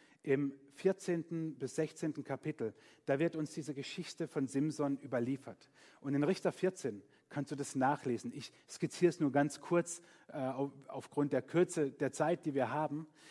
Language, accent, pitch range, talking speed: German, German, 140-165 Hz, 165 wpm